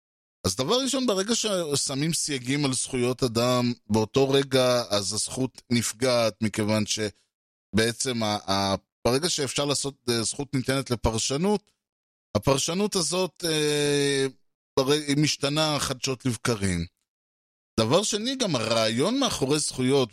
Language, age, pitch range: Hebrew, 20-39, 110-140 Hz